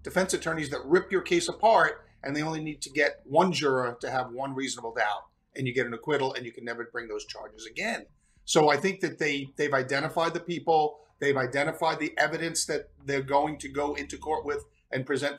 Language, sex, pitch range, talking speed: English, male, 125-150 Hz, 220 wpm